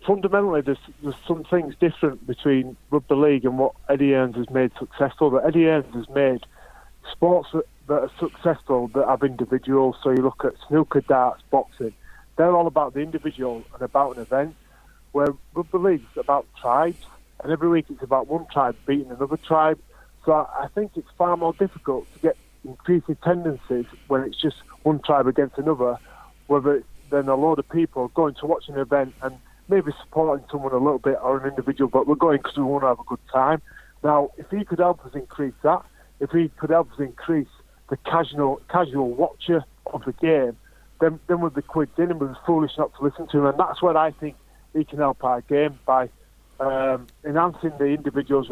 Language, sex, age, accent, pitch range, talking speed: English, male, 30-49, British, 135-160 Hz, 200 wpm